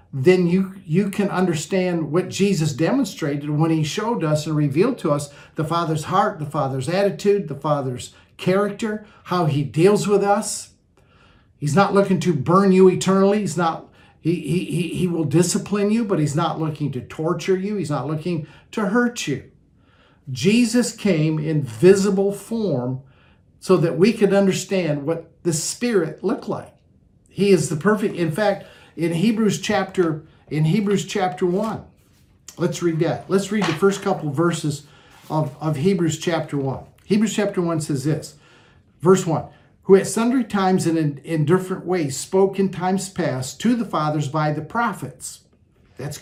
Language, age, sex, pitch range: English, 50-69, male, 155-195 Hz